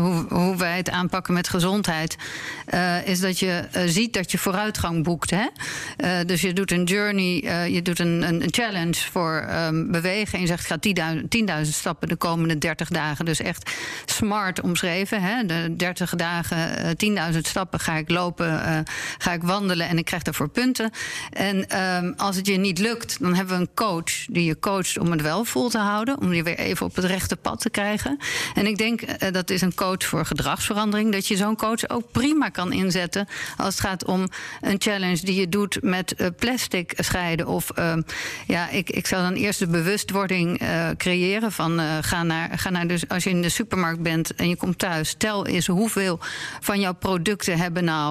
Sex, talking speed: female, 205 wpm